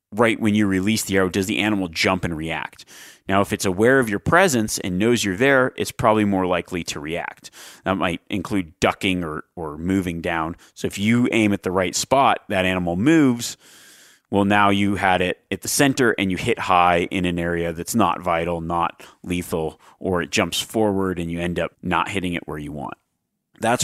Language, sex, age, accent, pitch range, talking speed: English, male, 30-49, American, 90-110 Hz, 210 wpm